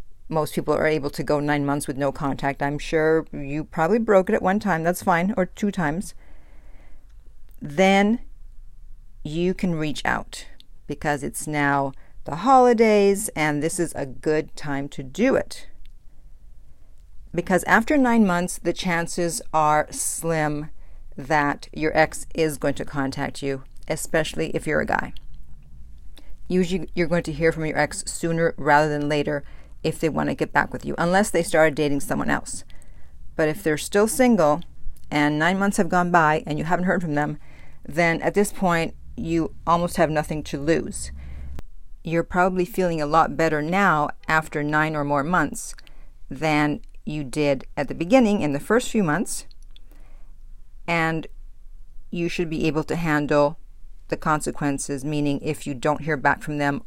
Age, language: 50-69, English